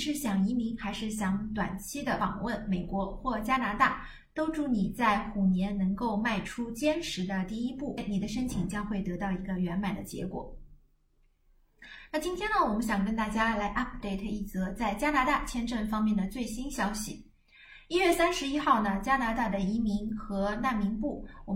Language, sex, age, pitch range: Chinese, female, 20-39, 205-290 Hz